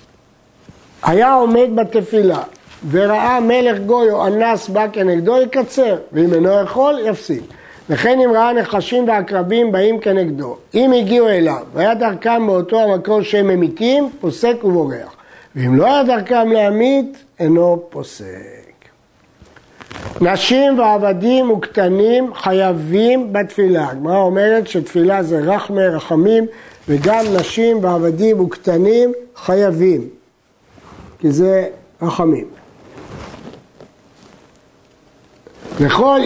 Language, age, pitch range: Hebrew, 60-79, 180-235 Hz